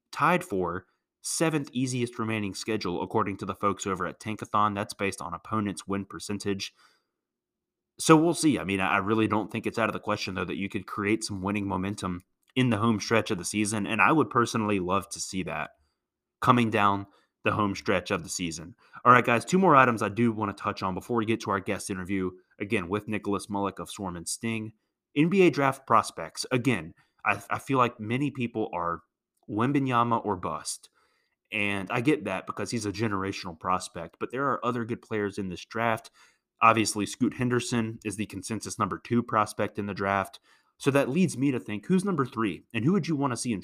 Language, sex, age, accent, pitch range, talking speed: English, male, 30-49, American, 95-120 Hz, 210 wpm